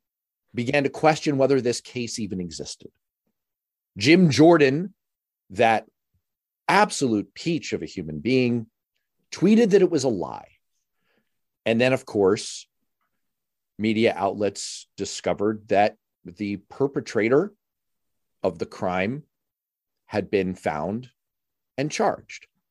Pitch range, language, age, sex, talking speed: 105-135 Hz, English, 40-59, male, 110 wpm